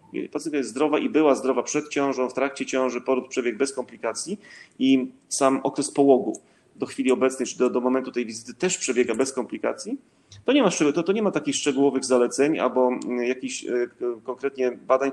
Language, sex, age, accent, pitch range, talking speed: Polish, male, 30-49, native, 125-150 Hz, 185 wpm